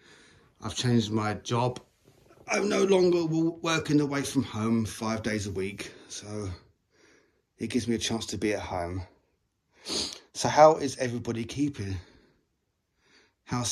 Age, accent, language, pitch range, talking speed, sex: 30-49, British, English, 100-130 Hz, 135 wpm, male